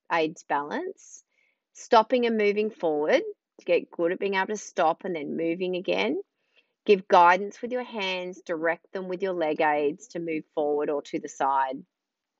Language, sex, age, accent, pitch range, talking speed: English, female, 30-49, Australian, 165-195 Hz, 175 wpm